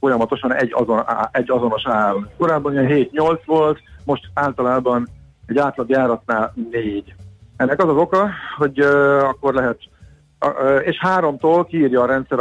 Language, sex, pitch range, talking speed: Hungarian, male, 115-145 Hz, 130 wpm